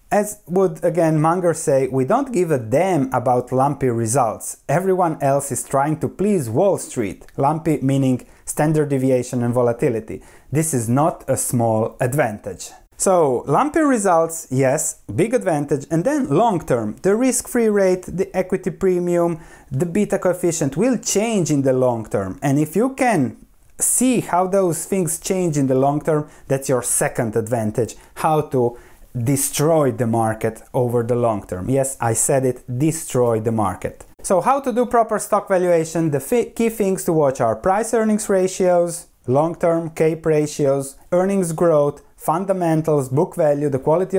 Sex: male